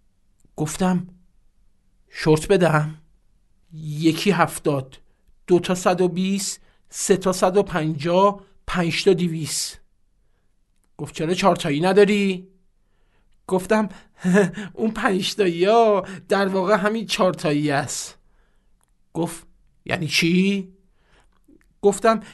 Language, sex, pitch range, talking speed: Persian, male, 155-205 Hz, 90 wpm